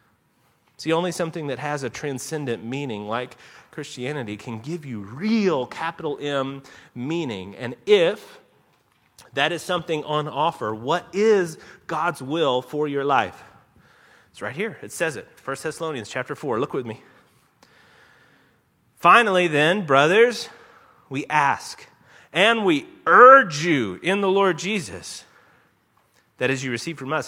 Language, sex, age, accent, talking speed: English, male, 30-49, American, 140 wpm